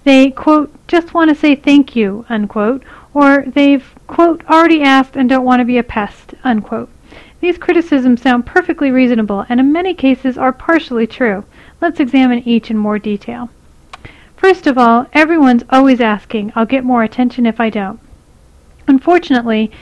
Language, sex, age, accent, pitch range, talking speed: English, female, 40-59, American, 235-285 Hz, 165 wpm